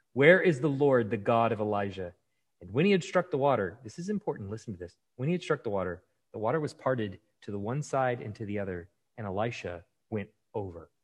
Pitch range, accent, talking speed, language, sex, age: 105-145 Hz, American, 235 wpm, English, male, 30-49